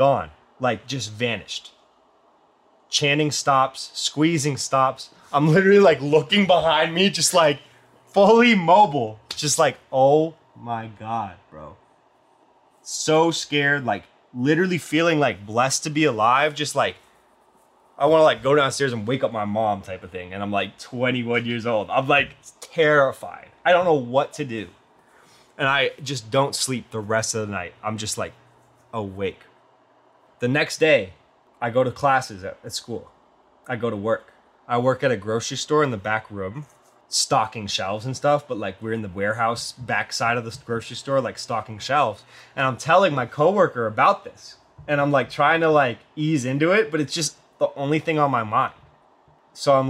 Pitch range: 110-150 Hz